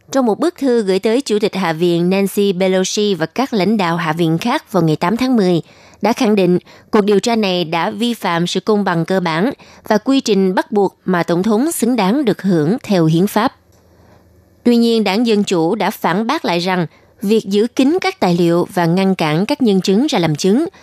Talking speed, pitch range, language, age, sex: 230 wpm, 175-225 Hz, Vietnamese, 20-39, female